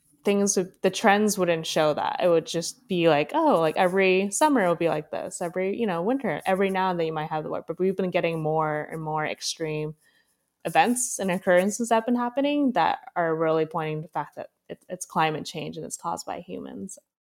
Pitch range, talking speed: 160-200 Hz, 225 wpm